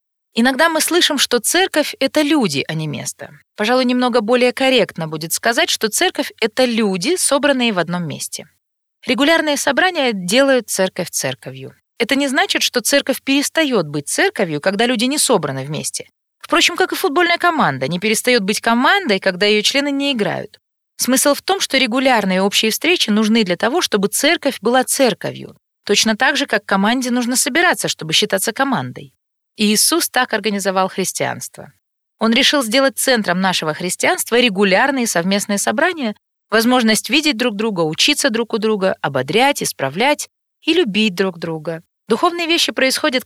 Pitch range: 190-275 Hz